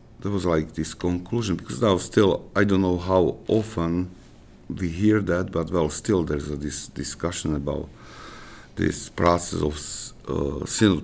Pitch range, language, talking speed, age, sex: 65-85 Hz, English, 160 wpm, 50-69, male